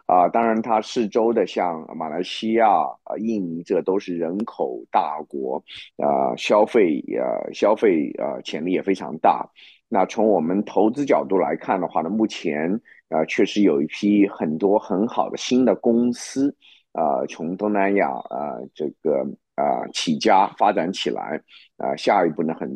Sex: male